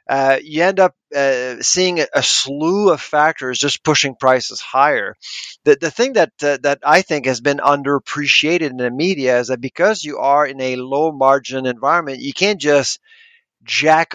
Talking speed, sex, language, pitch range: 175 wpm, male, English, 130-155 Hz